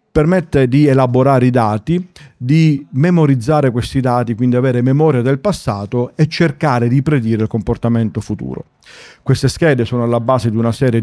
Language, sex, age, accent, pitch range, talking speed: Italian, male, 40-59, native, 110-145 Hz, 160 wpm